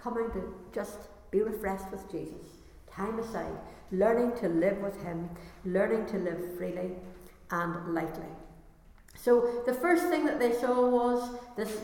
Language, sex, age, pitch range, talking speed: English, female, 60-79, 180-230 Hz, 145 wpm